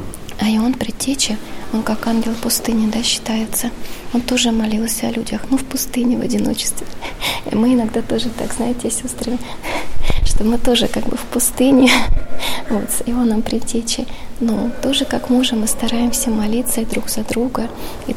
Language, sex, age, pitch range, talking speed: Russian, female, 20-39, 225-245 Hz, 160 wpm